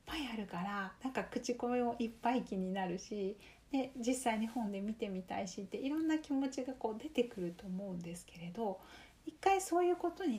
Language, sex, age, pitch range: Japanese, female, 40-59, 190-255 Hz